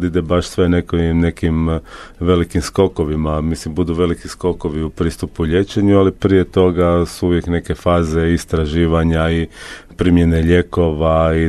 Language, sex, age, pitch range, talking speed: Croatian, male, 40-59, 80-95 Hz, 135 wpm